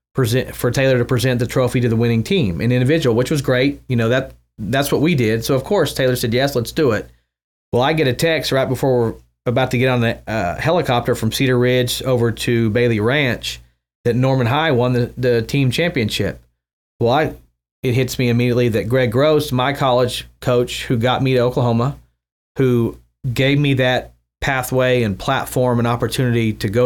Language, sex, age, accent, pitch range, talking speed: English, male, 40-59, American, 115-130 Hz, 200 wpm